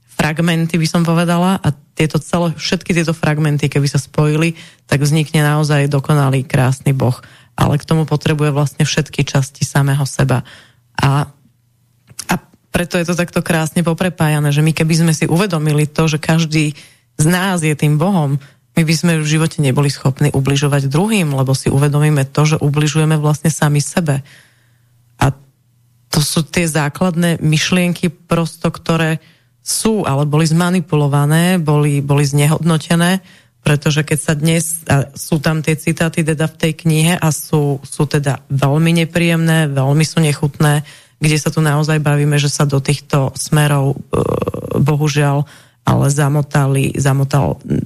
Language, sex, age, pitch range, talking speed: Slovak, female, 30-49, 140-165 Hz, 150 wpm